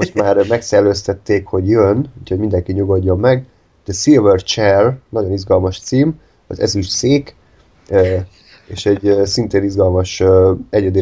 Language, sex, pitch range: Hungarian, male, 95-110 Hz